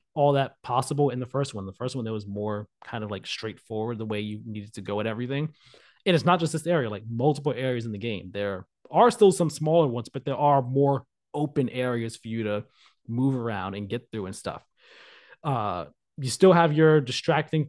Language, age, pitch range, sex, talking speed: English, 20-39, 120-155 Hz, male, 220 wpm